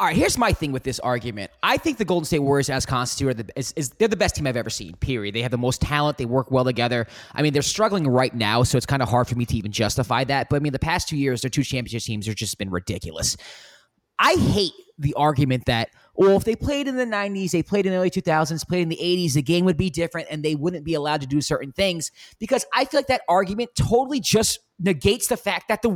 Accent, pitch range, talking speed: American, 145-215 Hz, 275 wpm